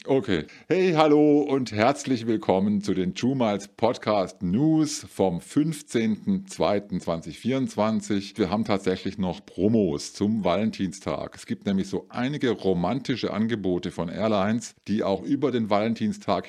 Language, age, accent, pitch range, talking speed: German, 50-69, German, 100-135 Hz, 125 wpm